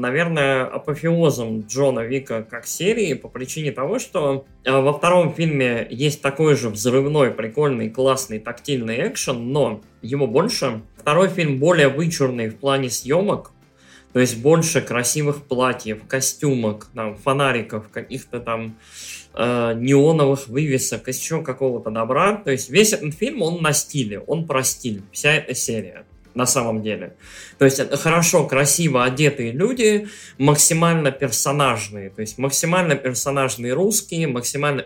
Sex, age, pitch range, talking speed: male, 20-39, 120-155 Hz, 135 wpm